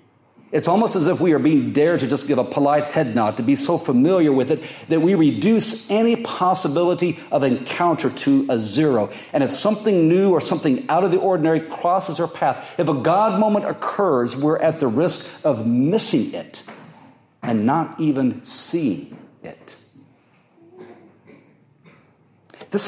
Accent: American